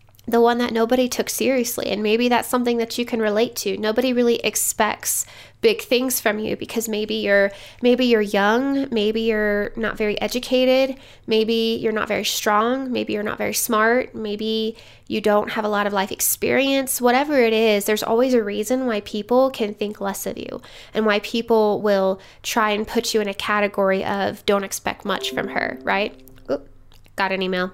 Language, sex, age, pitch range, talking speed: English, female, 10-29, 205-245 Hz, 185 wpm